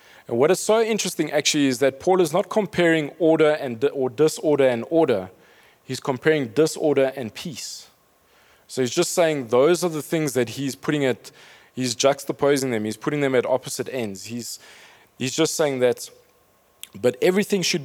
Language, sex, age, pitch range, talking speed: English, male, 20-39, 130-165 Hz, 175 wpm